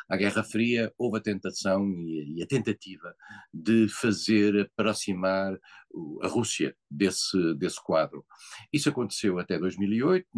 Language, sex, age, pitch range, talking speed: Portuguese, male, 50-69, 95-110 Hz, 120 wpm